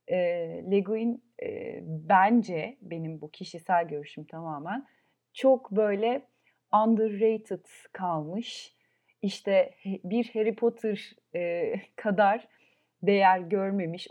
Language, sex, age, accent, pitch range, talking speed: Turkish, female, 30-49, native, 170-210 Hz, 90 wpm